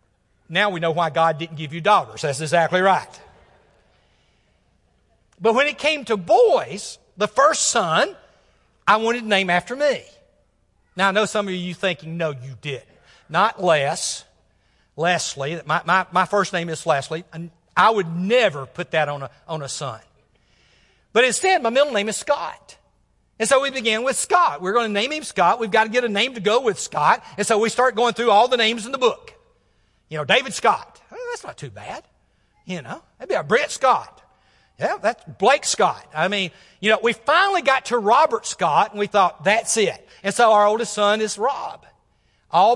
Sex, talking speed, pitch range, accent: male, 195 wpm, 170-230 Hz, American